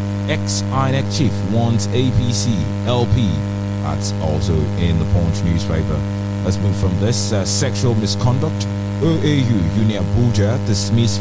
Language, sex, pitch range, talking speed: English, male, 100-110 Hz, 120 wpm